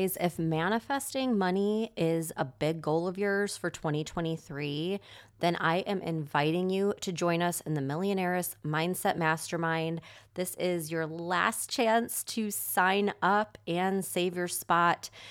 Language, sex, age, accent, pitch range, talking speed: English, female, 20-39, American, 155-200 Hz, 140 wpm